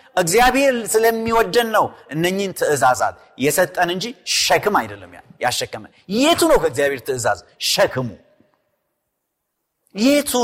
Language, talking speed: Amharic, 90 wpm